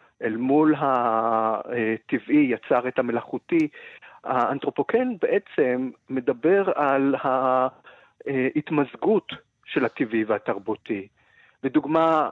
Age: 50-69